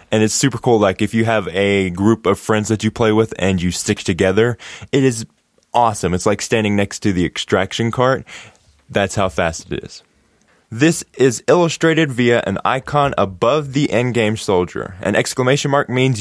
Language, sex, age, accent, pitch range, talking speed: English, male, 20-39, American, 95-130 Hz, 185 wpm